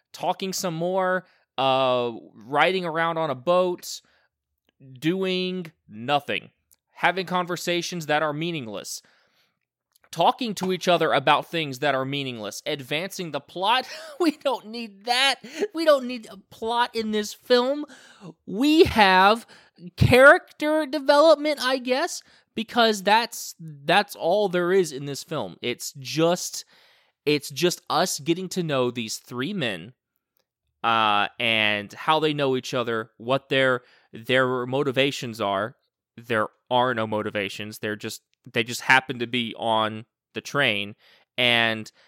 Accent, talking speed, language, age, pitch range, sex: American, 135 wpm, English, 20-39, 125-185 Hz, male